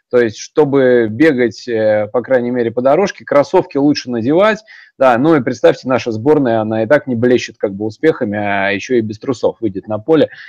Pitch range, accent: 120-160 Hz, native